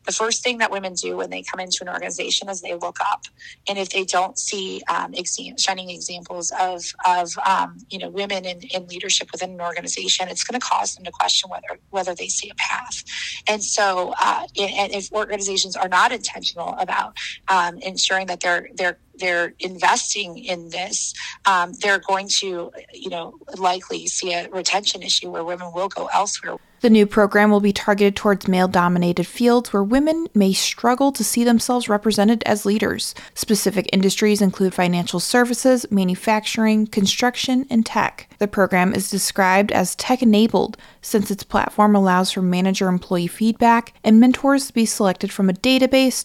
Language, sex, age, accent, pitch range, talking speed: English, female, 20-39, American, 185-225 Hz, 175 wpm